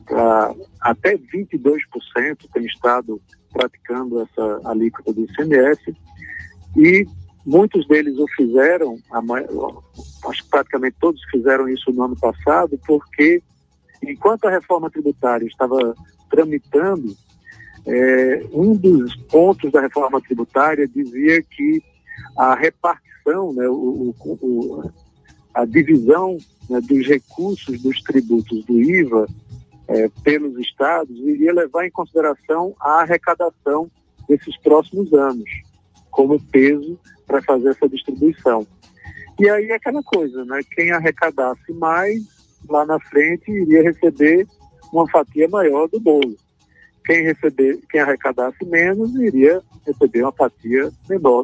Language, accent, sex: Portuguese, Brazilian, male